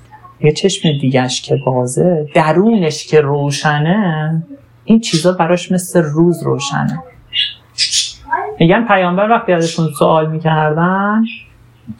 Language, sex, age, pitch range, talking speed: Persian, male, 40-59, 145-215 Hz, 100 wpm